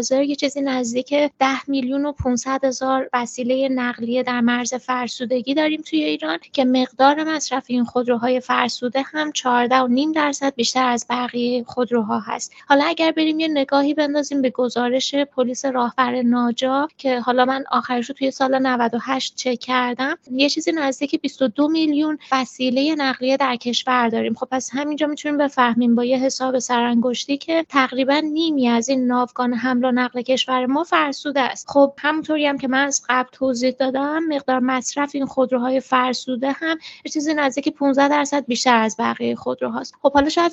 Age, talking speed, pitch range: 20-39, 160 wpm, 250-280 Hz